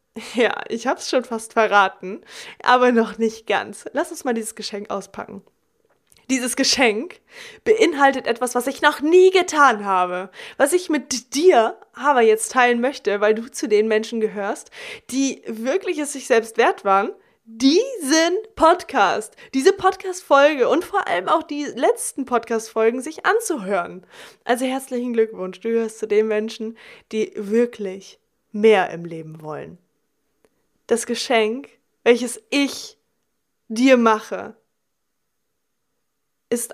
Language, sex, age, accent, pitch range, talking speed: German, female, 20-39, German, 225-295 Hz, 130 wpm